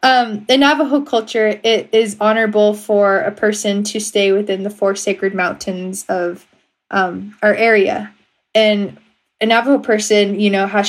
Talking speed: 155 wpm